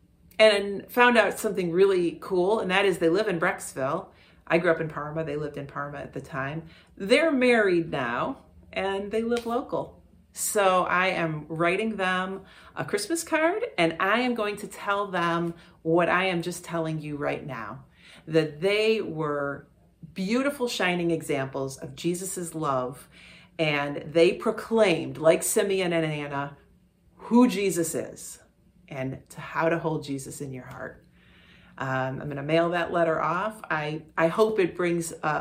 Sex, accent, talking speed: female, American, 165 wpm